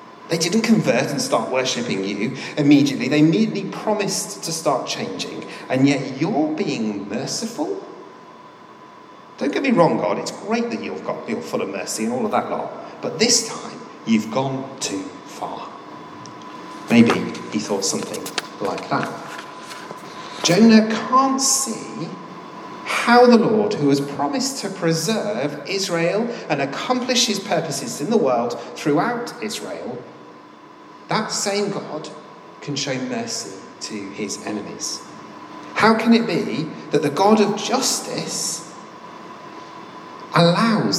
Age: 40-59